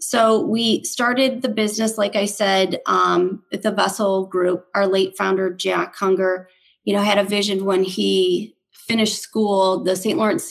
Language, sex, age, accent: English, female, 30-49, American